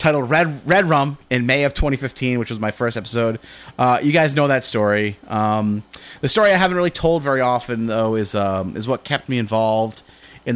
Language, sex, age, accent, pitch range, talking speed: English, male, 30-49, American, 115-145 Hz, 210 wpm